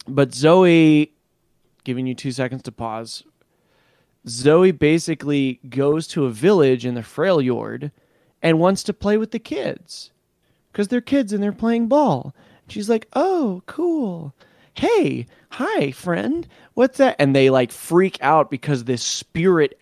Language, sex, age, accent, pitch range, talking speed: English, male, 20-39, American, 130-180 Hz, 150 wpm